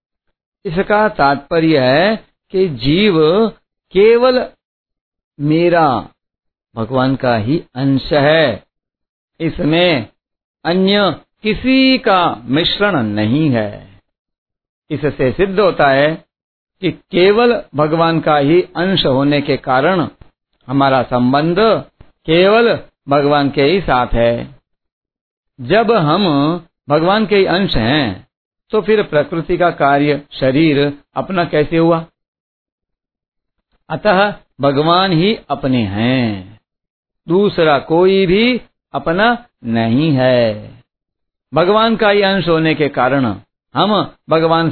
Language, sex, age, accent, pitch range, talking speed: Hindi, male, 50-69, native, 140-190 Hz, 100 wpm